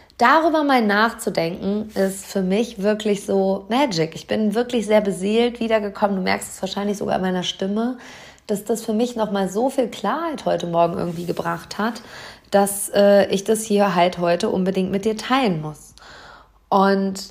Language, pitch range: German, 185-225 Hz